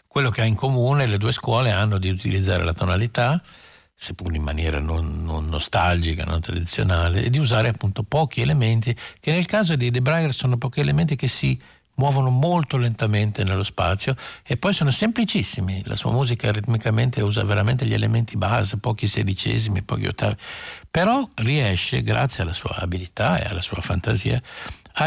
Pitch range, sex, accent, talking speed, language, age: 95-125 Hz, male, native, 170 wpm, Italian, 60-79